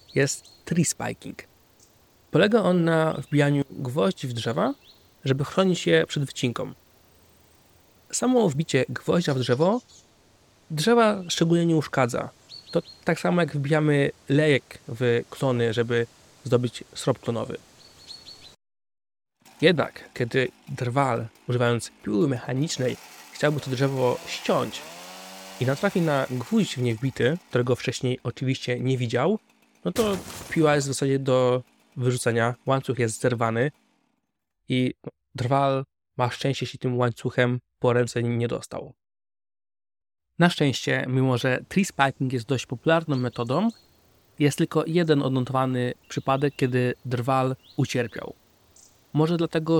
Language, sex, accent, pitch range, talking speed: Polish, male, native, 120-155 Hz, 120 wpm